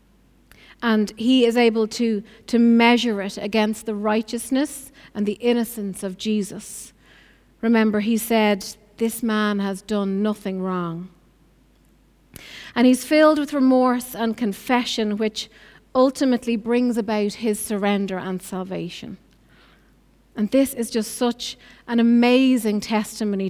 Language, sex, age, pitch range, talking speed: English, female, 30-49, 200-235 Hz, 125 wpm